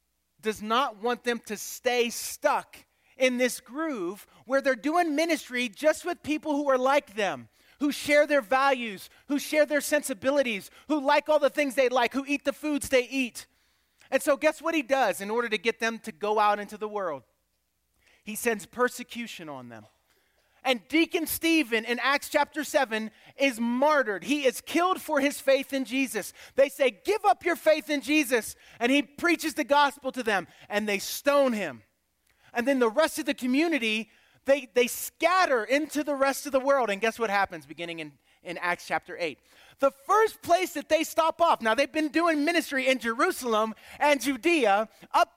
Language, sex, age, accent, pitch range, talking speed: English, male, 30-49, American, 230-305 Hz, 190 wpm